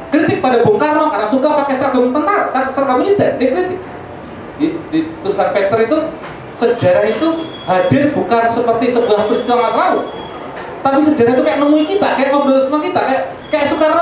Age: 20-39